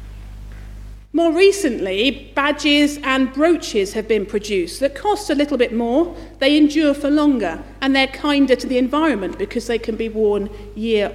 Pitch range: 200-280 Hz